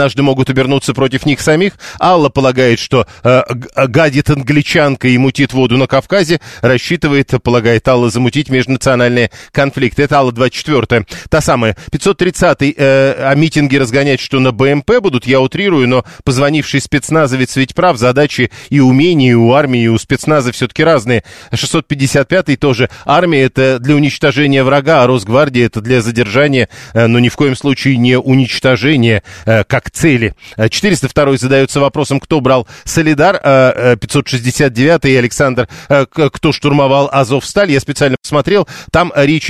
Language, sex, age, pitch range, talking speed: Russian, male, 40-59, 125-145 Hz, 145 wpm